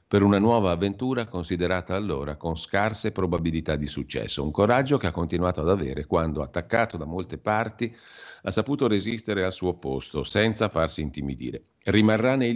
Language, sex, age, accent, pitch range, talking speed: Italian, male, 50-69, native, 80-100 Hz, 160 wpm